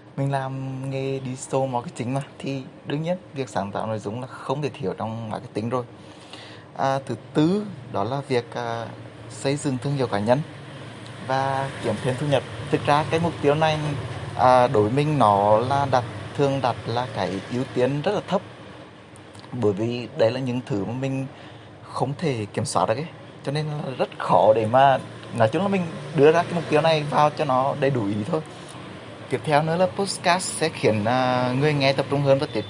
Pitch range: 115-145 Hz